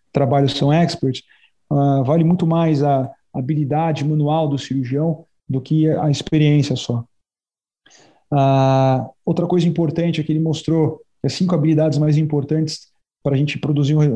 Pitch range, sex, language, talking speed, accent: 135-155 Hz, male, Portuguese, 145 wpm, Brazilian